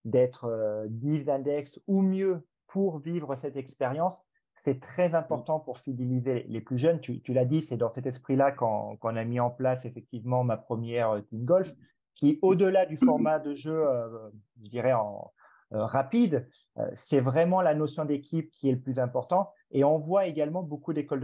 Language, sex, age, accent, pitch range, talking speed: French, male, 40-59, French, 125-165 Hz, 180 wpm